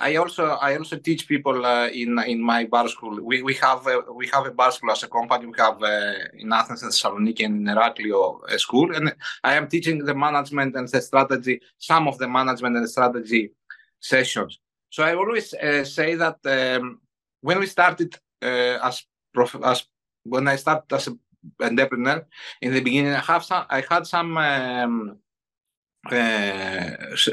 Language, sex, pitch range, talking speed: Greek, male, 130-165 Hz, 185 wpm